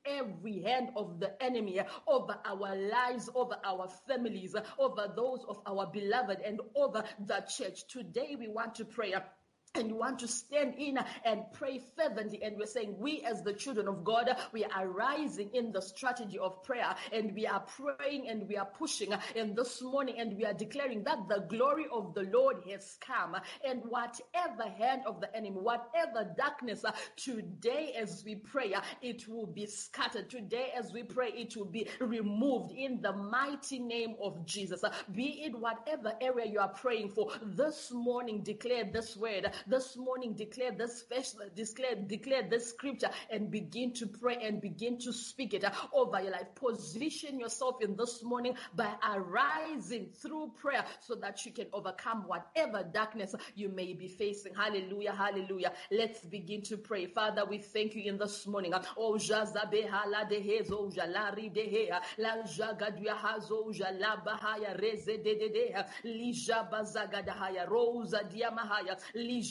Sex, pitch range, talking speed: female, 205-250 Hz, 150 wpm